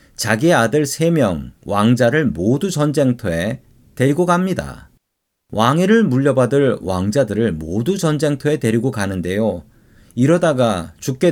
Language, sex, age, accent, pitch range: Korean, male, 40-59, native, 100-155 Hz